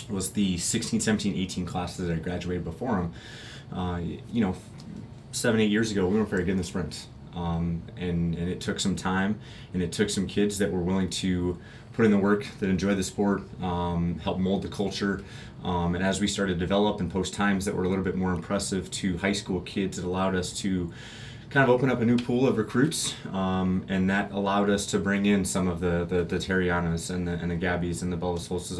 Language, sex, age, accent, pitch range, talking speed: English, male, 20-39, American, 90-100 Hz, 230 wpm